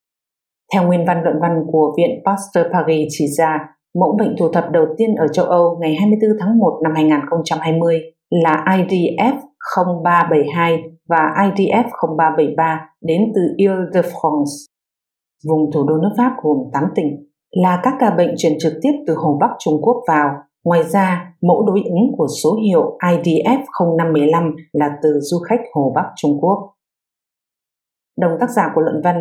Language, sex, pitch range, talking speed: English, female, 160-205 Hz, 165 wpm